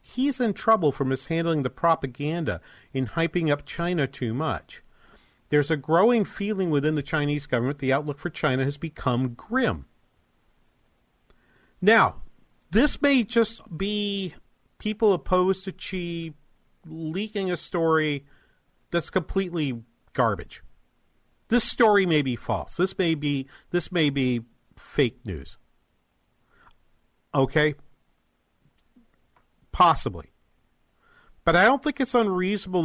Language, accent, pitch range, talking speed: English, American, 135-185 Hz, 115 wpm